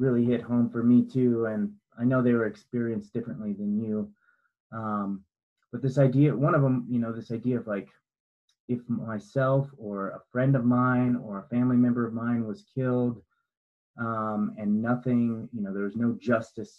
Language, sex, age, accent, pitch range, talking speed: English, male, 30-49, American, 105-125 Hz, 185 wpm